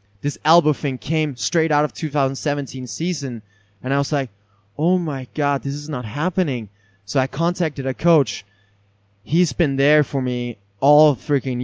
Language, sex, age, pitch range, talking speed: English, male, 20-39, 115-150 Hz, 165 wpm